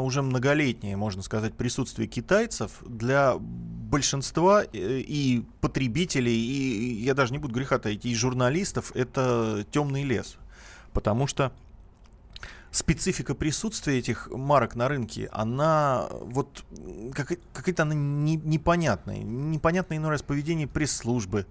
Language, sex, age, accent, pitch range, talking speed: Russian, male, 30-49, native, 110-140 Hz, 110 wpm